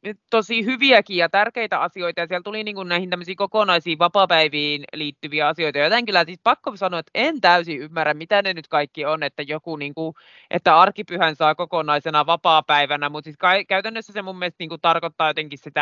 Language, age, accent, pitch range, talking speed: Finnish, 20-39, native, 140-165 Hz, 180 wpm